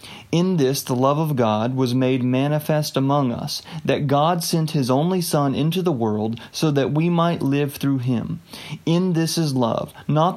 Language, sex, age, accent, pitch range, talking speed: English, male, 30-49, American, 125-155 Hz, 185 wpm